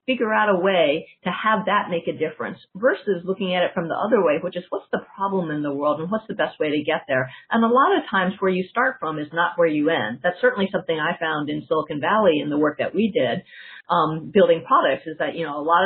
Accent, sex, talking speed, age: American, female, 270 wpm, 40-59